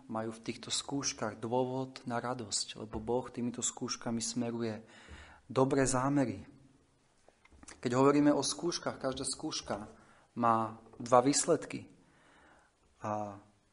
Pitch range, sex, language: 120-155 Hz, male, Slovak